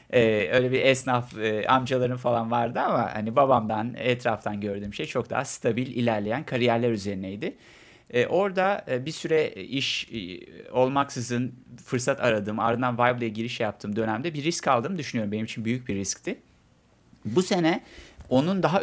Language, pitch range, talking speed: Turkish, 115-140 Hz, 155 wpm